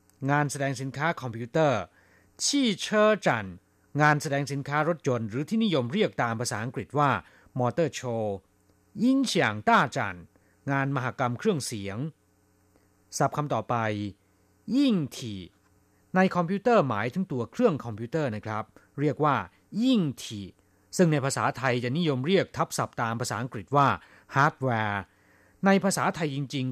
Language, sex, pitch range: Thai, male, 110-155 Hz